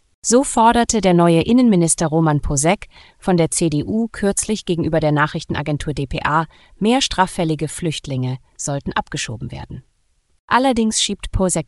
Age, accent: 30-49, German